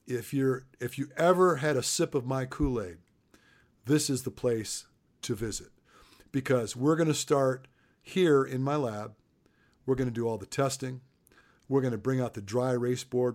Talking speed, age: 190 wpm, 50-69